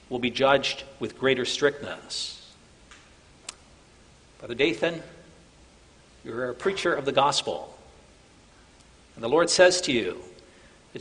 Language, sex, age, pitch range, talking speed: English, male, 50-69, 120-170 Hz, 115 wpm